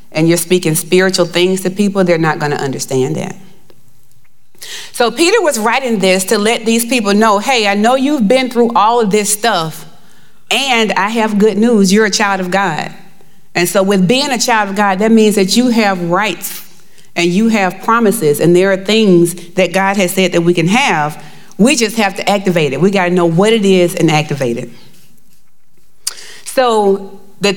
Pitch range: 185-230 Hz